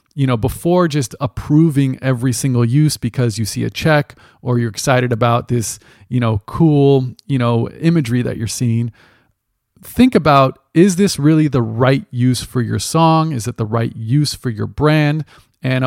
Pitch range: 115-140 Hz